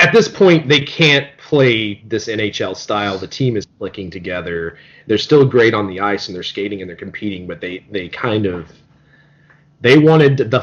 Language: English